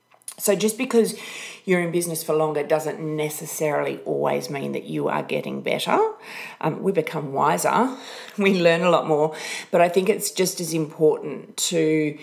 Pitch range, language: 155-195 Hz, English